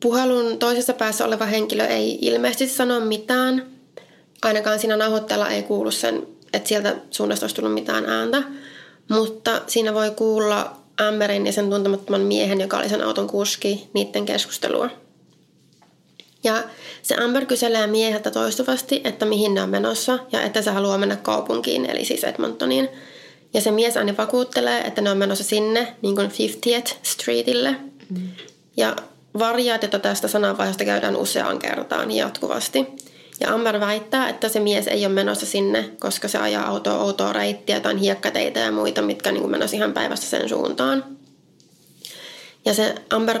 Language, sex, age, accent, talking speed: Finnish, female, 20-39, native, 150 wpm